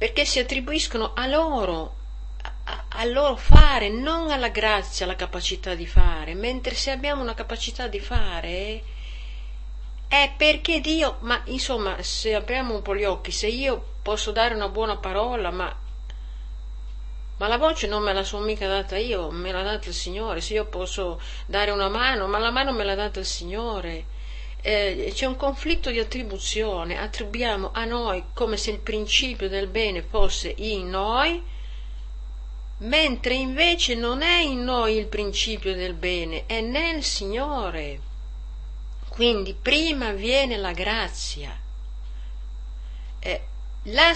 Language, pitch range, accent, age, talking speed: Italian, 170-240 Hz, native, 50-69, 145 wpm